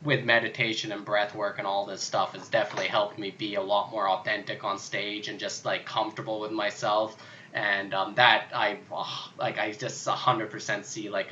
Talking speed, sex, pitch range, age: 195 wpm, male, 105-125 Hz, 20-39